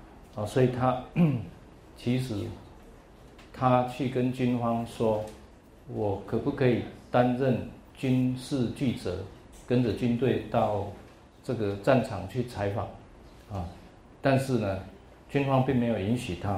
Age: 50-69